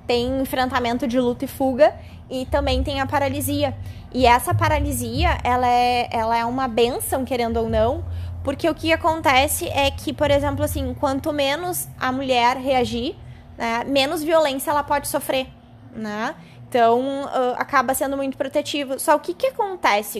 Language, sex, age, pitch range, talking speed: Portuguese, female, 20-39, 230-285 Hz, 160 wpm